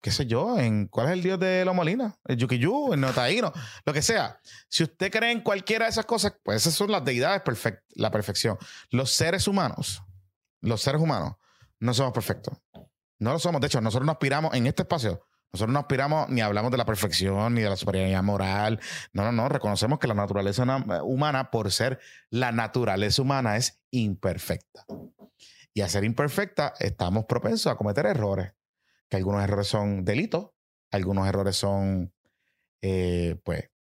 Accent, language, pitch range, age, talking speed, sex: Venezuelan, Spanish, 105-155 Hz, 30-49, 180 wpm, male